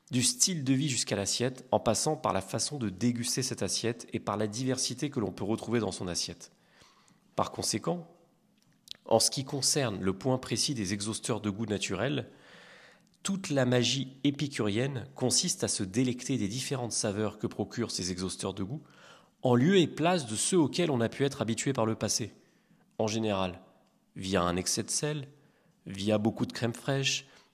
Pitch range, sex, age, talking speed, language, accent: 110-140 Hz, male, 30-49, 185 wpm, French, French